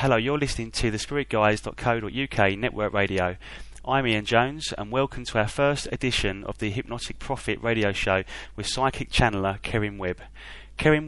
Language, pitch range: English, 105-125 Hz